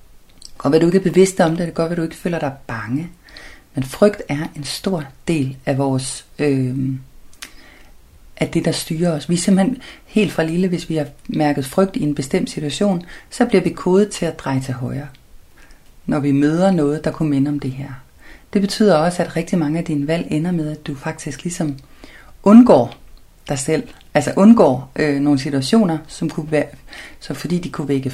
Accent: native